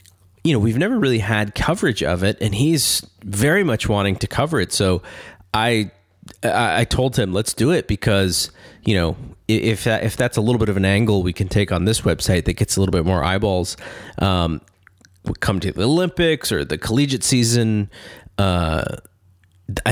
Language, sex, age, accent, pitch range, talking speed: English, male, 30-49, American, 95-115 Hz, 185 wpm